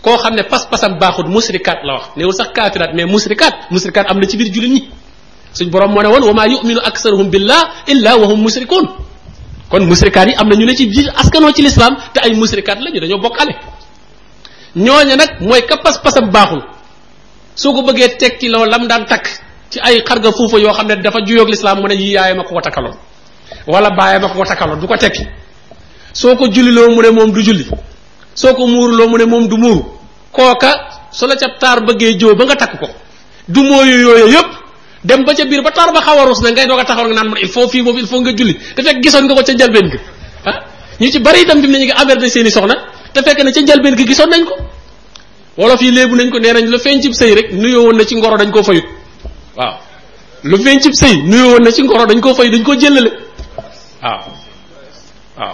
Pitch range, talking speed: 210-265 Hz, 40 wpm